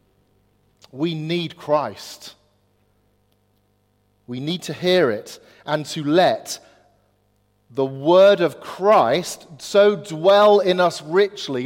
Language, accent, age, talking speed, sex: English, British, 40-59, 105 wpm, male